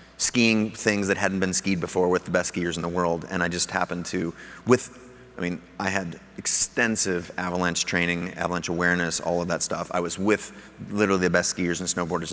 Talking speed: 205 wpm